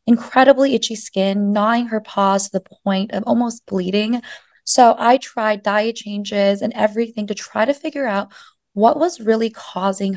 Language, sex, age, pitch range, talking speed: English, female, 20-39, 195-240 Hz, 165 wpm